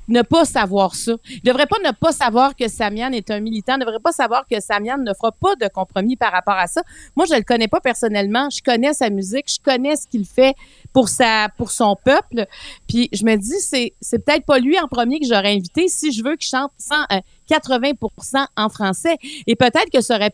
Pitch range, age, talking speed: 200-270 Hz, 40-59, 240 wpm